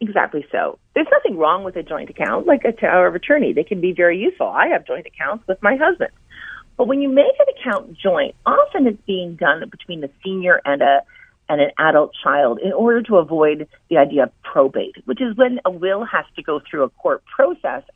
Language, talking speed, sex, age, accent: English, 225 wpm, female, 40-59, American